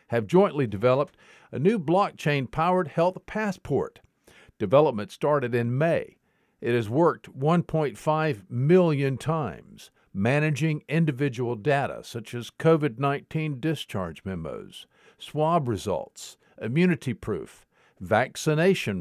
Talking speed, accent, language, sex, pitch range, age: 100 wpm, American, English, male, 120-160 Hz, 50-69